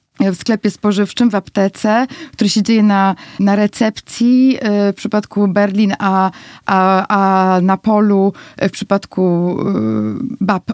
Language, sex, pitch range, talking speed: Polish, female, 195-245 Hz, 140 wpm